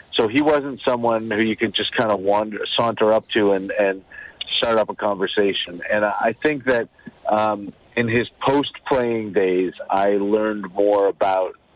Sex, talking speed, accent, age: male, 175 wpm, American, 40-59